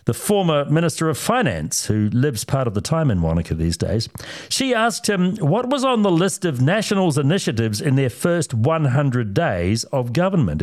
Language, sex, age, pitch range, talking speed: English, male, 60-79, 120-175 Hz, 185 wpm